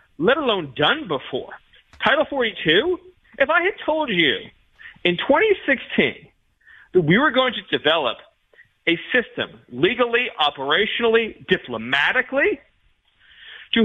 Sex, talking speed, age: male, 110 wpm, 40-59